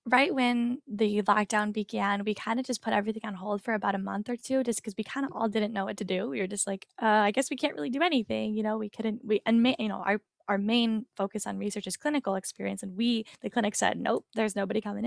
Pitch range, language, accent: 195-240 Hz, English, American